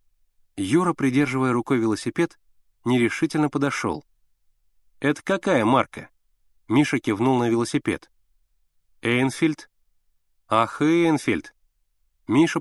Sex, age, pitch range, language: male, 30-49, 100-145 Hz, Russian